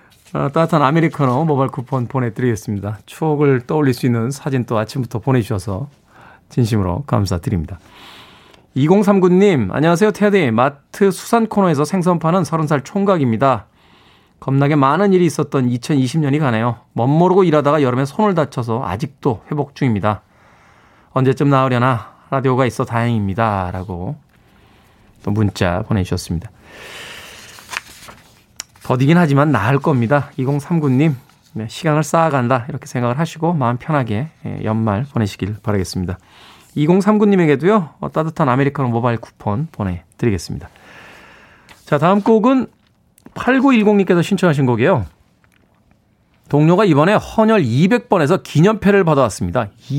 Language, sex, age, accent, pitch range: Korean, male, 20-39, native, 120-170 Hz